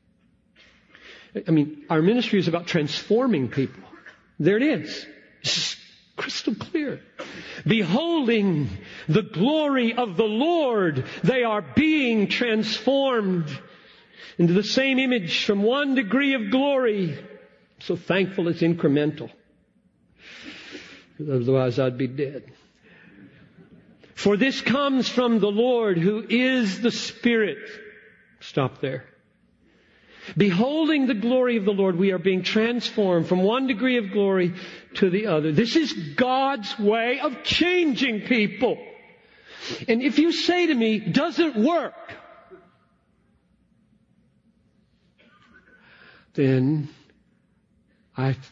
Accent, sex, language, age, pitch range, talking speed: American, male, Hindi, 50-69, 155-245 Hz, 110 wpm